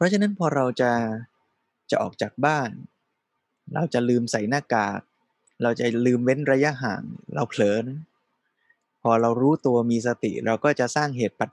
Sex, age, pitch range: male, 20-39, 115-145 Hz